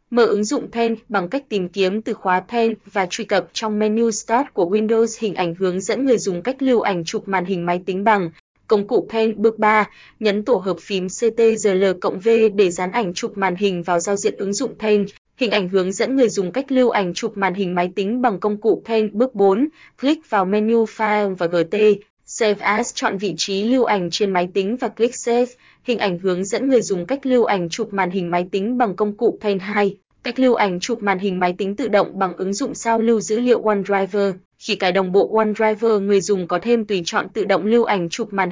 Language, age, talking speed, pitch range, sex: Vietnamese, 20-39, 230 wpm, 195-230 Hz, female